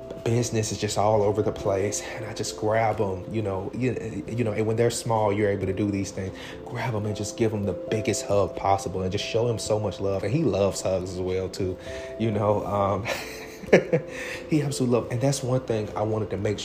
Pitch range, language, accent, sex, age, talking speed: 100-120 Hz, English, American, male, 30-49, 235 wpm